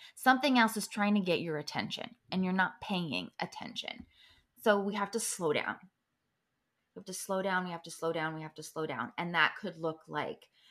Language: English